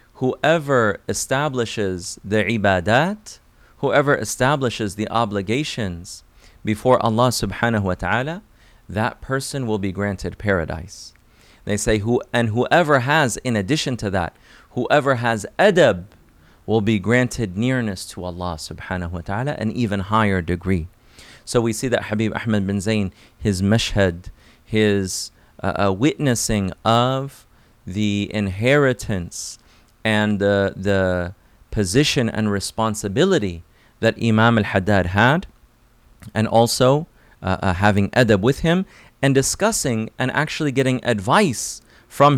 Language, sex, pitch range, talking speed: English, male, 100-130 Hz, 125 wpm